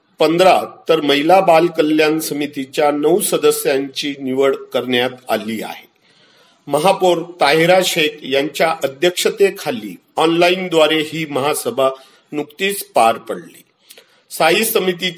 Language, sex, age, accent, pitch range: Marathi, male, 50-69, native, 140-185 Hz